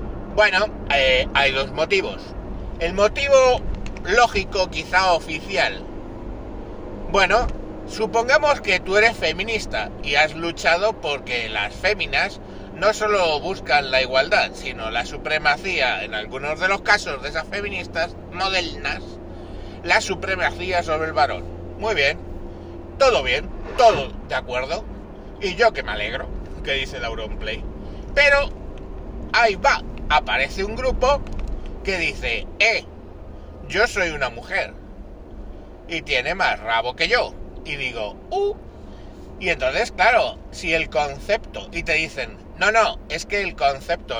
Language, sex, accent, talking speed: Spanish, male, Spanish, 130 wpm